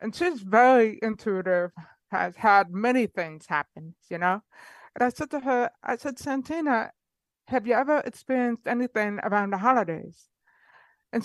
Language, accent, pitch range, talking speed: English, American, 205-255 Hz, 150 wpm